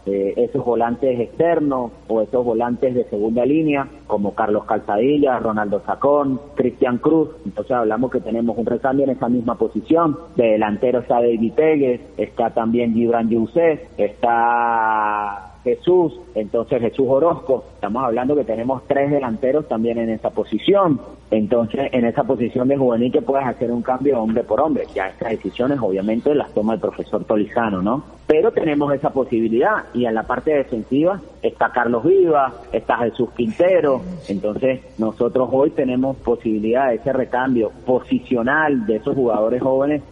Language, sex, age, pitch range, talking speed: Spanish, male, 40-59, 115-145 Hz, 155 wpm